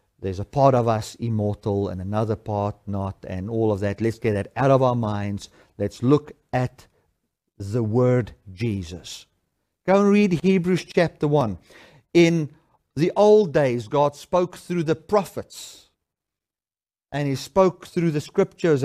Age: 50-69